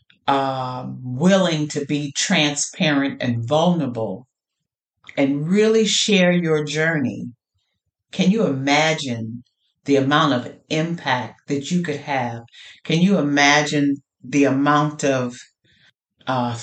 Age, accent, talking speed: 50-69, American, 110 wpm